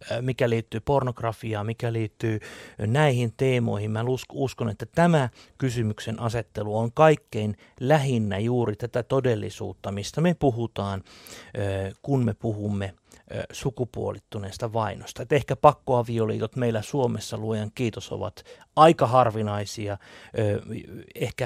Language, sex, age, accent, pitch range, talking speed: Finnish, male, 30-49, native, 110-145 Hz, 105 wpm